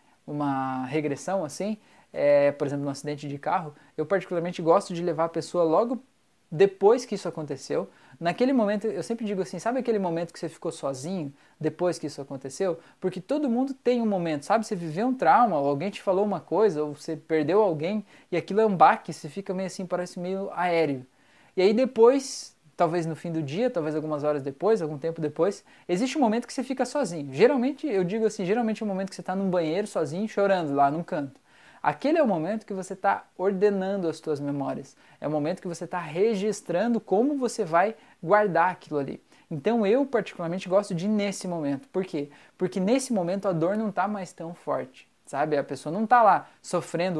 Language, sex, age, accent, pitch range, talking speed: Portuguese, male, 20-39, Brazilian, 155-215 Hz, 210 wpm